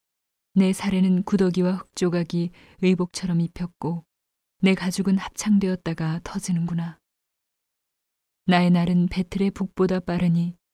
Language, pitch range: Korean, 170-190 Hz